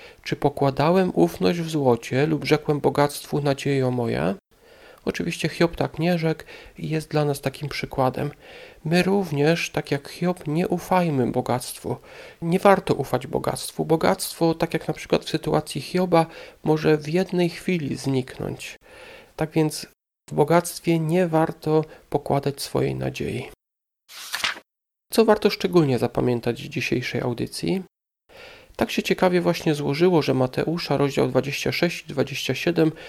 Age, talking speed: 40-59, 130 wpm